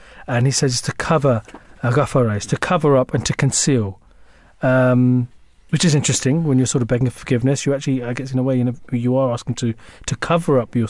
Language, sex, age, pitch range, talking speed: English, male, 40-59, 120-145 Hz, 220 wpm